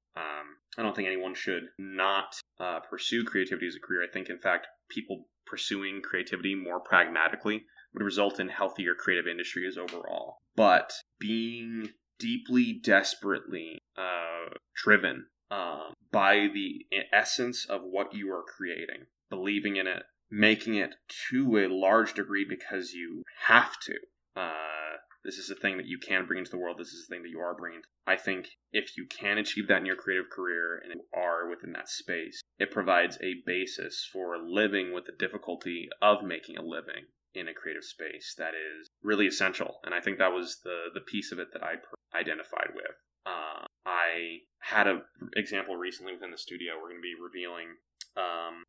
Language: English